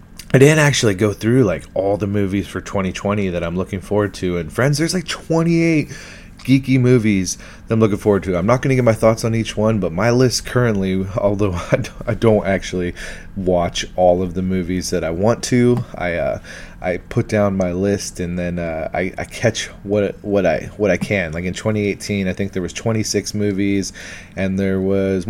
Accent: American